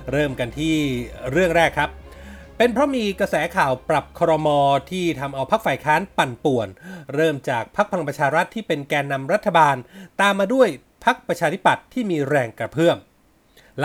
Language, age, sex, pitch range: Thai, 30-49, male, 145-190 Hz